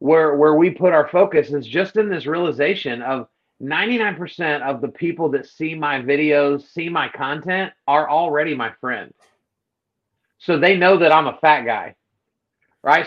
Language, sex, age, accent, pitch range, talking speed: English, male, 30-49, American, 145-185 Hz, 165 wpm